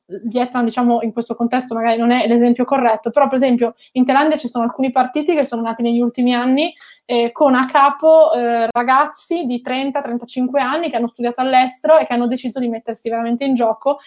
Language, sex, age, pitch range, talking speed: Italian, female, 20-39, 235-280 Hz, 200 wpm